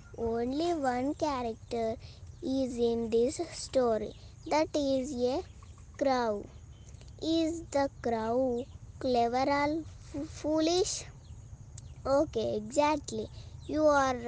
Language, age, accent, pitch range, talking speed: Telugu, 20-39, native, 235-300 Hz, 90 wpm